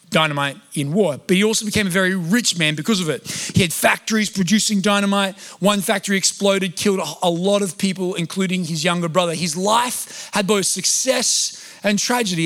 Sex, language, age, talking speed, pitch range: male, English, 30-49, 185 wpm, 180-230 Hz